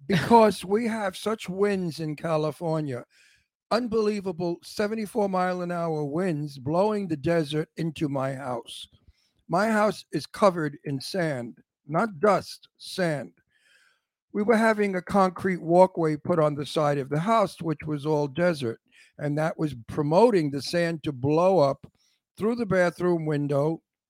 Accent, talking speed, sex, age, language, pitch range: American, 135 wpm, male, 60-79, English, 150-190 Hz